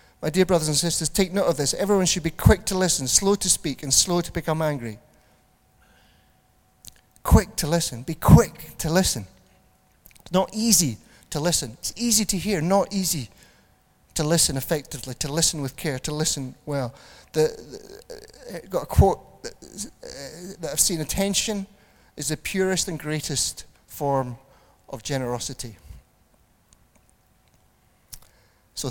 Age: 40-59